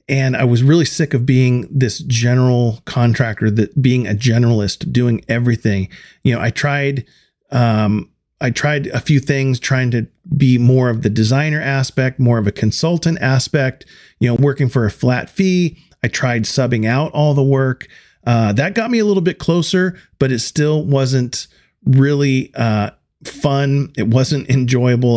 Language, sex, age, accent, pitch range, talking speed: English, male, 40-59, American, 120-145 Hz, 170 wpm